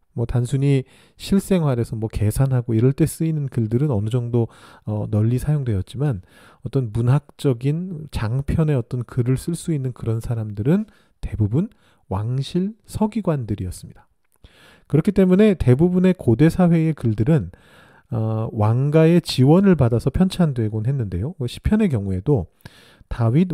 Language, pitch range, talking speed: English, 120-170 Hz, 105 wpm